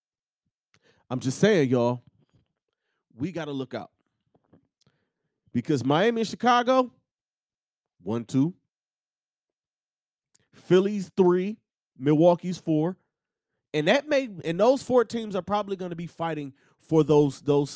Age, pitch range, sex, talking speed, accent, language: 30-49, 120-185 Hz, male, 120 wpm, American, English